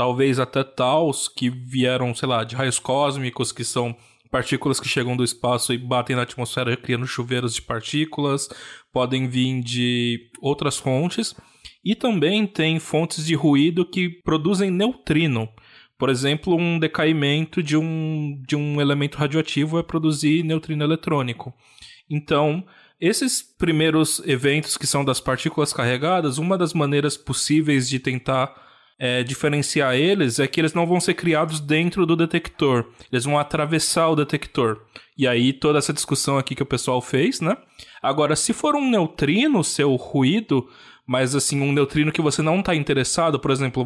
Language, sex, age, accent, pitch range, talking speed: Portuguese, male, 20-39, Brazilian, 130-160 Hz, 155 wpm